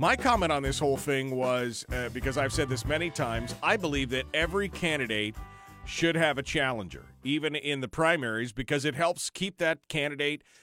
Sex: male